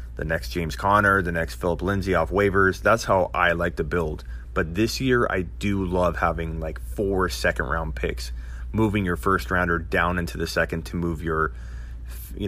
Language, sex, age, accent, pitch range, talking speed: English, male, 30-49, American, 75-95 Hz, 190 wpm